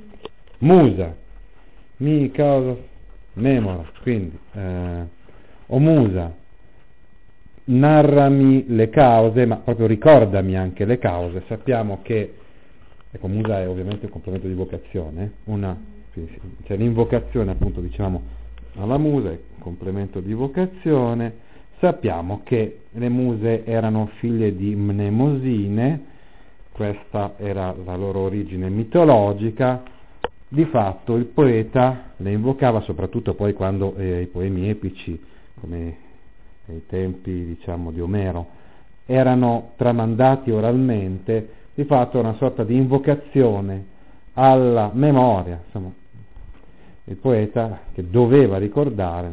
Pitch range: 95-120 Hz